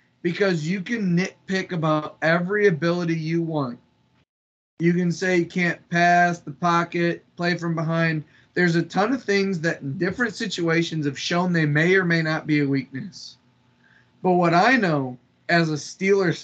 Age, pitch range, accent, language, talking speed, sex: 30-49, 150-180 Hz, American, English, 170 wpm, male